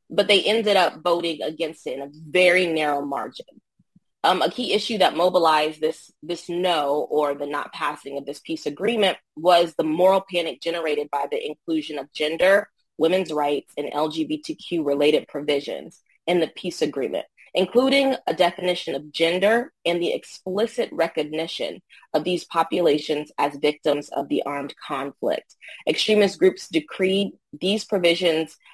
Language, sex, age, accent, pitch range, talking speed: English, female, 20-39, American, 150-190 Hz, 150 wpm